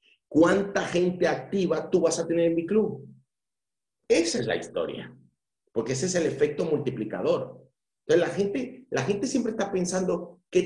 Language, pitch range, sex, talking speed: Spanish, 120-175 Hz, male, 165 wpm